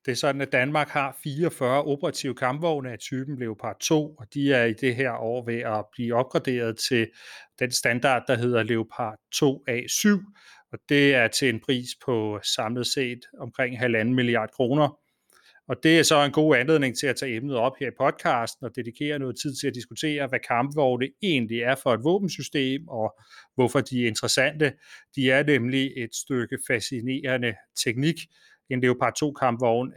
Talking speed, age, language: 175 wpm, 30-49, Danish